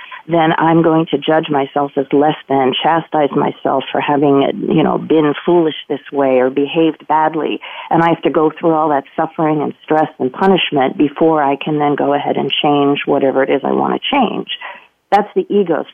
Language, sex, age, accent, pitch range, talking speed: English, female, 40-59, American, 155-195 Hz, 200 wpm